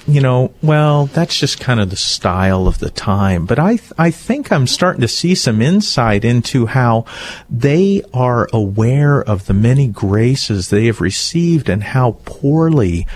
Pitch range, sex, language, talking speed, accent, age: 95-130 Hz, male, English, 175 wpm, American, 50-69